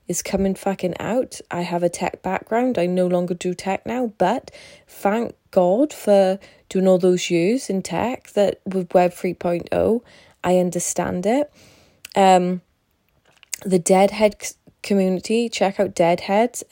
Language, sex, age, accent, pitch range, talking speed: English, female, 20-39, British, 175-195 Hz, 140 wpm